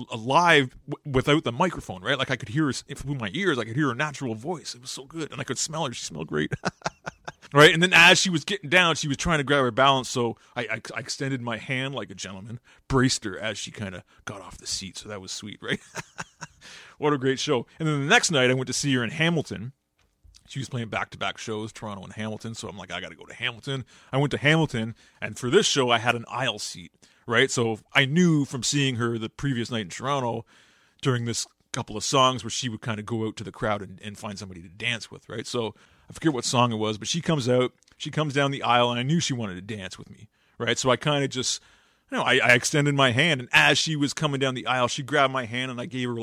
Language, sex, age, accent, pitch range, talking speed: English, male, 30-49, American, 115-145 Hz, 265 wpm